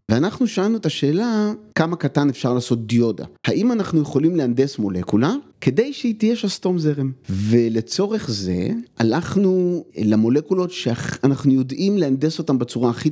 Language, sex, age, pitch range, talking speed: Hebrew, male, 30-49, 115-180 Hz, 135 wpm